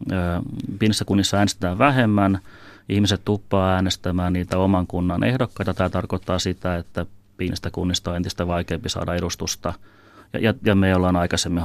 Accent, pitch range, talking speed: native, 90-100 Hz, 145 wpm